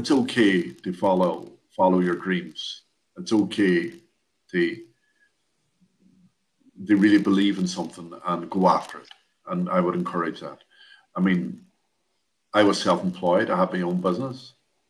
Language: English